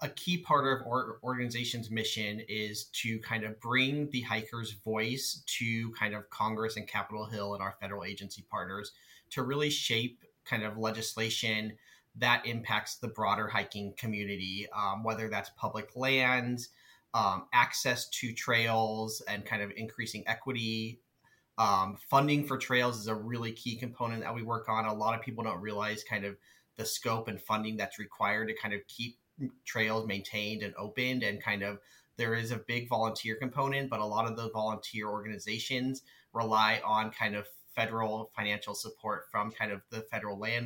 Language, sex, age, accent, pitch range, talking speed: English, male, 30-49, American, 105-120 Hz, 170 wpm